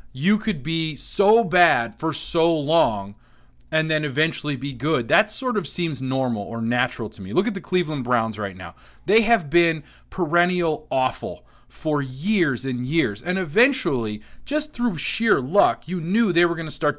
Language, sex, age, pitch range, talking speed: English, male, 30-49, 130-190 Hz, 180 wpm